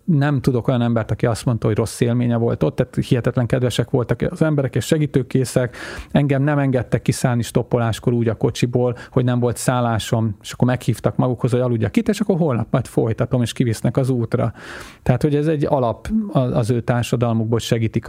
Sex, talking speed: male, 190 wpm